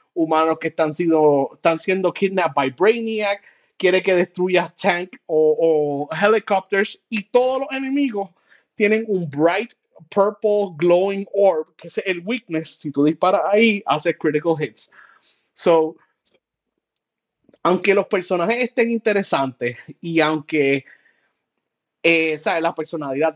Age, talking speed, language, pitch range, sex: 30-49, 130 wpm, Spanish, 155-195 Hz, male